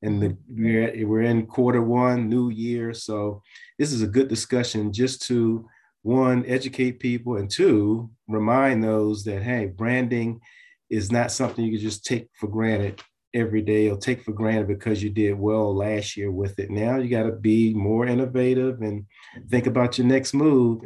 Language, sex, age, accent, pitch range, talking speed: English, male, 40-59, American, 105-130 Hz, 180 wpm